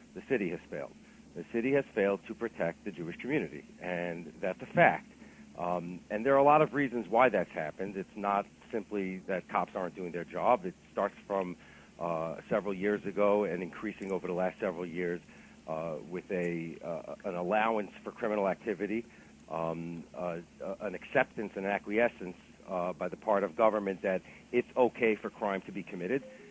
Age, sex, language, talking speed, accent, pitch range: 50-69, male, English, 180 wpm, American, 95-120 Hz